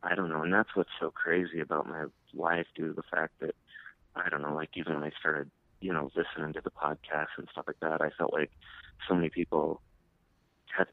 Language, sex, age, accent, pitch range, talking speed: English, male, 30-49, American, 80-90 Hz, 225 wpm